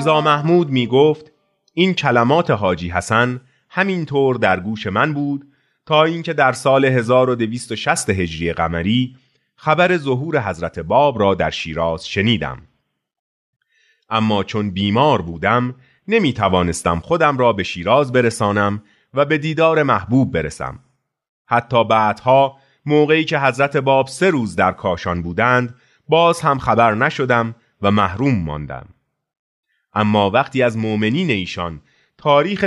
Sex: male